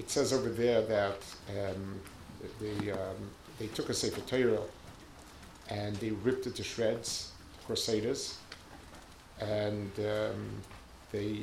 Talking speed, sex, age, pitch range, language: 130 wpm, male, 50-69, 90-125 Hz, English